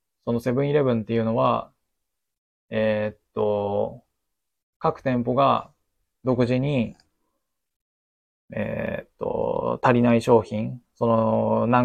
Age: 20-39